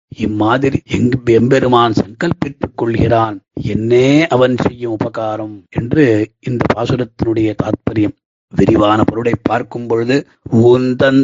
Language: Tamil